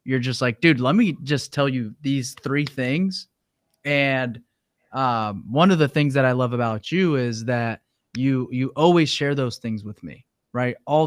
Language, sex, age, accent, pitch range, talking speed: English, male, 20-39, American, 125-155 Hz, 190 wpm